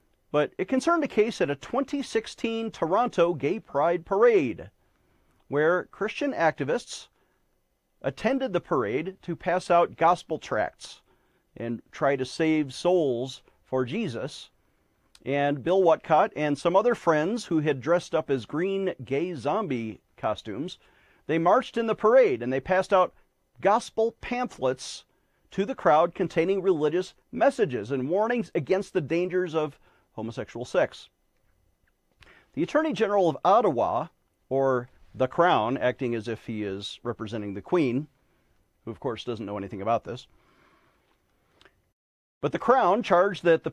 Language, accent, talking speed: English, American, 140 wpm